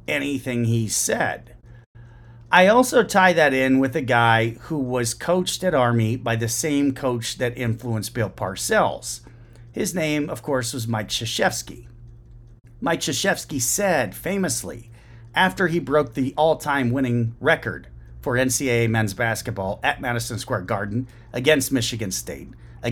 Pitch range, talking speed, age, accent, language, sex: 115-145 Hz, 140 wpm, 40-59, American, English, male